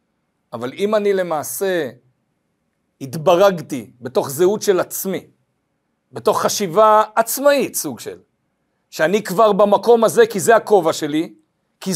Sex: male